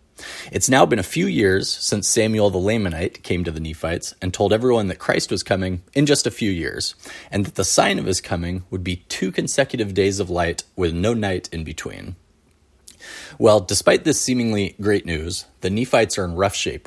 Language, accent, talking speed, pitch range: English, American, 205 wpm, 90-105 Hz